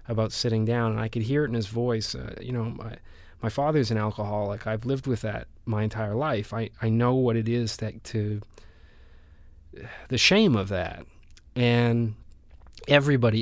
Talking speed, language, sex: 180 wpm, English, male